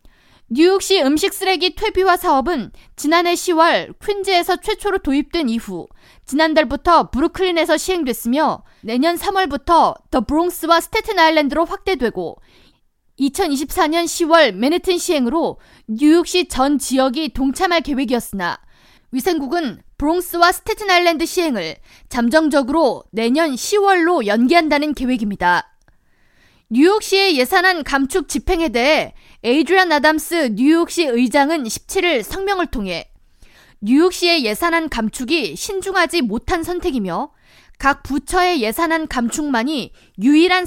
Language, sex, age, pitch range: Korean, female, 20-39, 270-360 Hz